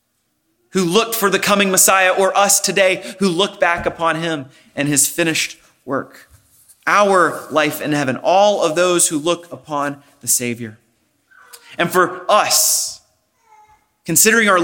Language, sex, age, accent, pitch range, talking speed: English, male, 30-49, American, 160-225 Hz, 145 wpm